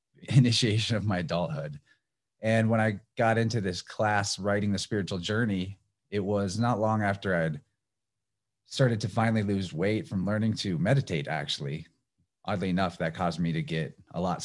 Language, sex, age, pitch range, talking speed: English, male, 30-49, 90-115 Hz, 165 wpm